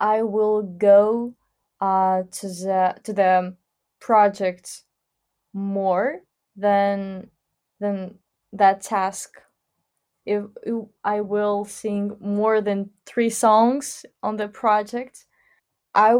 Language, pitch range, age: English, 195-230 Hz, 20-39